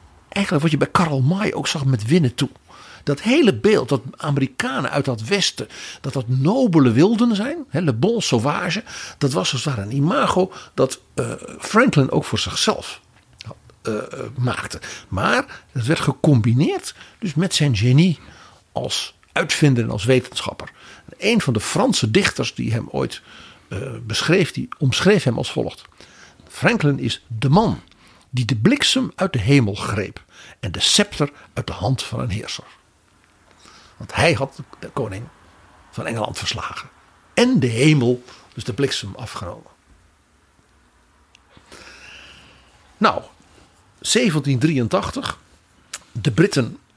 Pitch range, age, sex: 115-160 Hz, 50-69, male